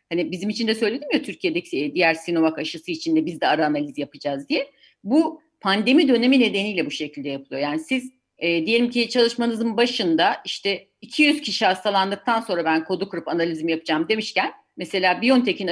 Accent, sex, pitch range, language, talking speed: native, female, 180-275 Hz, Turkish, 170 wpm